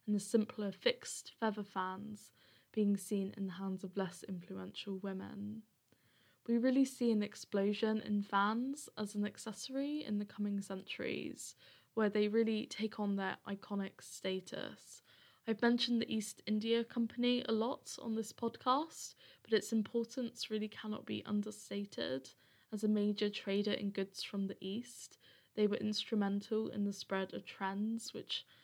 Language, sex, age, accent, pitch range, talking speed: English, female, 10-29, British, 200-225 Hz, 155 wpm